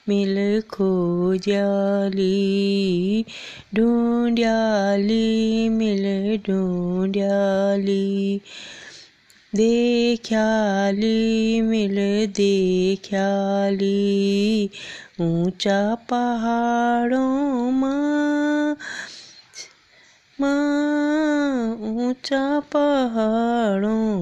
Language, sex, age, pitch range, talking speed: Hindi, female, 20-39, 195-240 Hz, 45 wpm